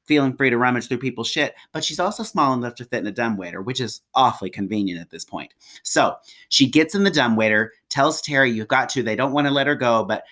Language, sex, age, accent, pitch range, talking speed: English, male, 30-49, American, 110-150 Hz, 250 wpm